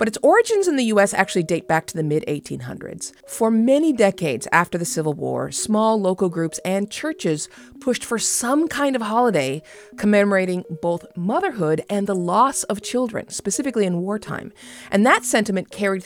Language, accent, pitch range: English, American, 170-230 Hz